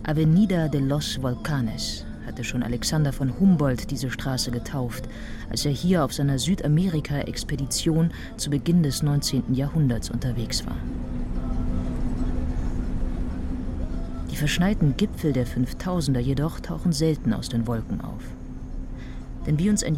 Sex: female